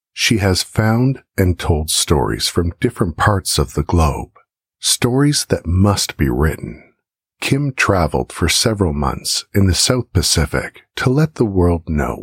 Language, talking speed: English, 150 wpm